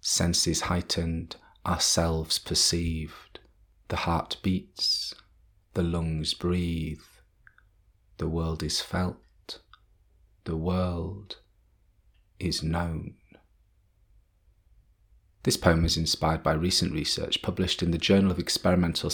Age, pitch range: 30-49, 85-95 Hz